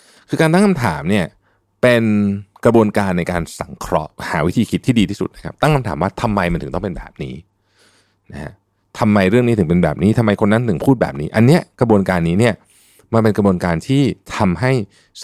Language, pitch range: Thai, 85-115 Hz